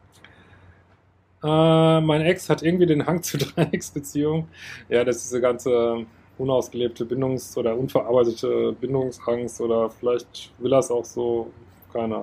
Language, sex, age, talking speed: German, male, 20-39, 130 wpm